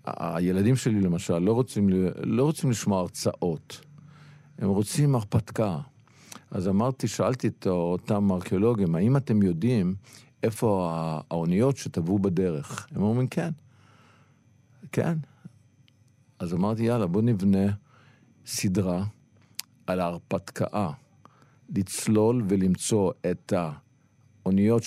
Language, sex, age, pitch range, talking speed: Hebrew, male, 50-69, 90-120 Hz, 100 wpm